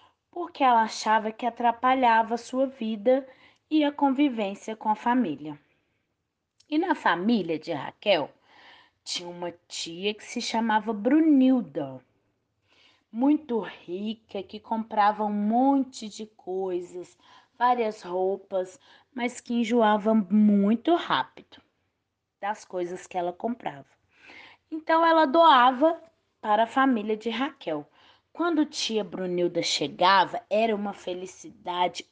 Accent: Brazilian